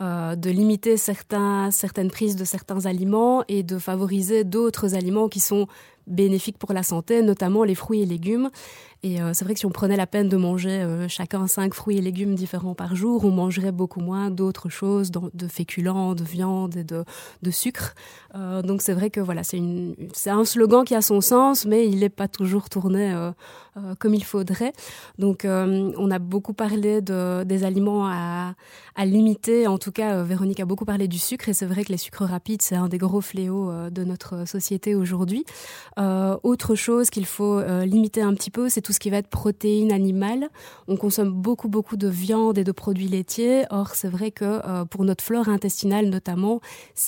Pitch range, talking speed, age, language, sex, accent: 185-215 Hz, 210 wpm, 20-39, French, female, French